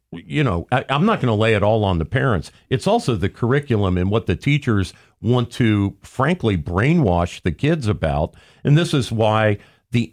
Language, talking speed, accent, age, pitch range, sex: English, 195 wpm, American, 50-69, 95-130 Hz, male